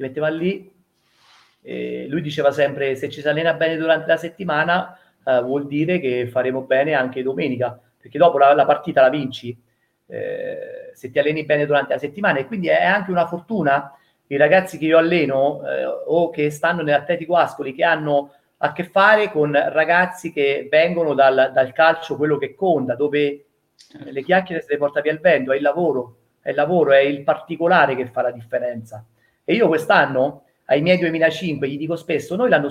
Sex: male